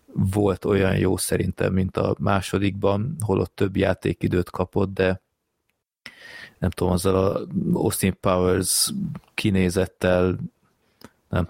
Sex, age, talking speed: male, 30-49, 110 wpm